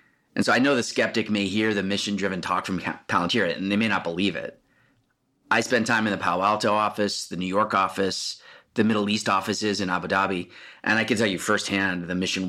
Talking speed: 220 wpm